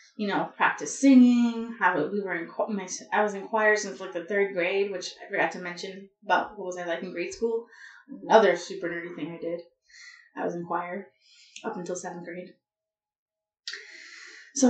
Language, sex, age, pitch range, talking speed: English, female, 20-39, 190-250 Hz, 185 wpm